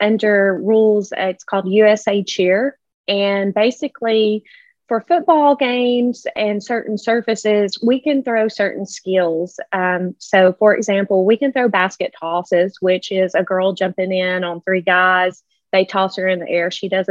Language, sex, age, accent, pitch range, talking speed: English, female, 20-39, American, 185-215 Hz, 160 wpm